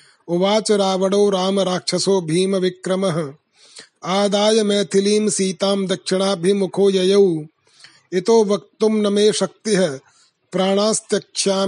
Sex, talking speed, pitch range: male, 100 wpm, 180-210 Hz